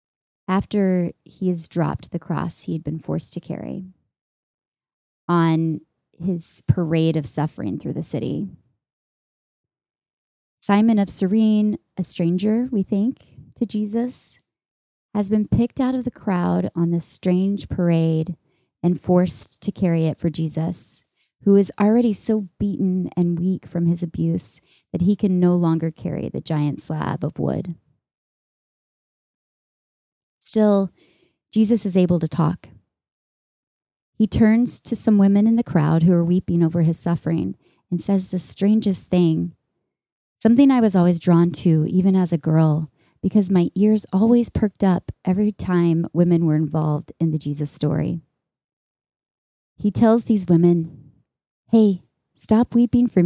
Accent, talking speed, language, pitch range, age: American, 140 wpm, English, 165-205 Hz, 30-49